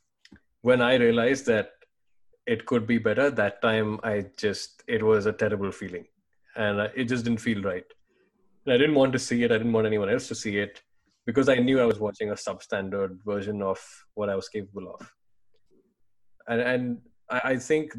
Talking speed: 195 wpm